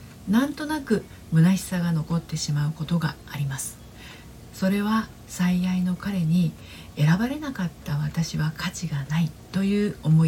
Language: Japanese